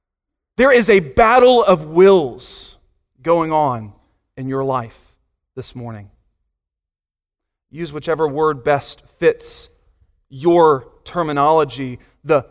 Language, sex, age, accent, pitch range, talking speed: English, male, 30-49, American, 130-190 Hz, 100 wpm